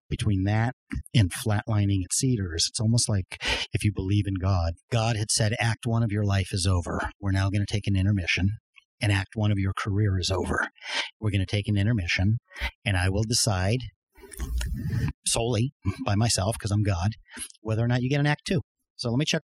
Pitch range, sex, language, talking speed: 85-105 Hz, male, English, 205 wpm